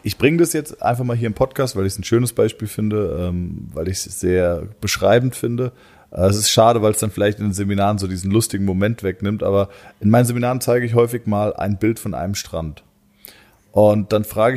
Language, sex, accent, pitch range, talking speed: German, male, German, 105-130 Hz, 220 wpm